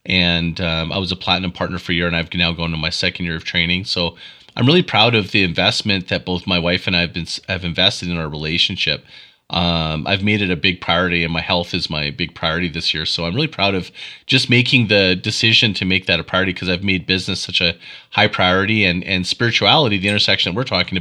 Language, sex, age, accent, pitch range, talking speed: English, male, 30-49, American, 90-105 Hz, 245 wpm